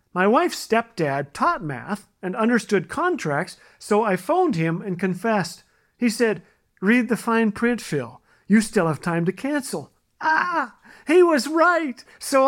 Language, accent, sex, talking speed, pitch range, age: English, American, male, 155 wpm, 175-240 Hz, 50-69